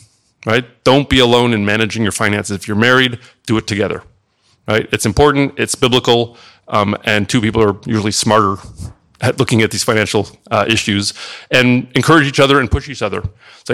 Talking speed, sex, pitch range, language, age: 185 wpm, male, 105-130 Hz, English, 30-49